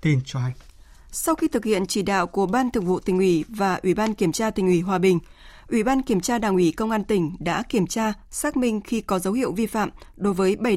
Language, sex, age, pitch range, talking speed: Vietnamese, female, 20-39, 185-240 Hz, 245 wpm